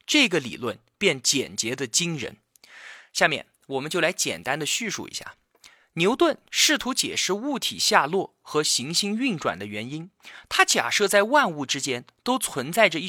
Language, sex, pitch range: Chinese, male, 170-270 Hz